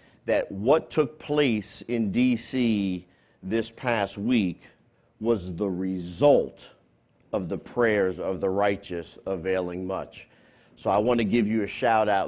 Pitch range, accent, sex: 95-125 Hz, American, male